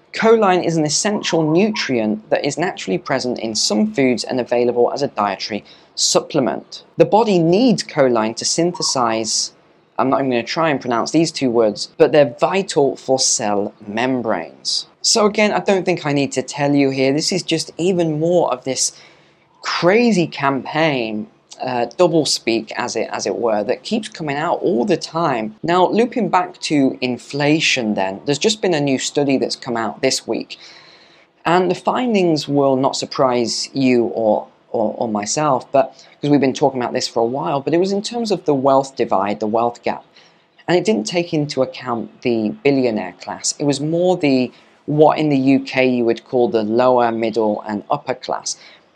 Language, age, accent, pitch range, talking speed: English, 20-39, British, 120-170 Hz, 185 wpm